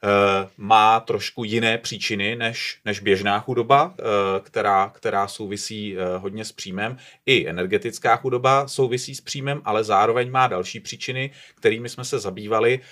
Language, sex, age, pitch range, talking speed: Czech, male, 30-49, 100-120 Hz, 135 wpm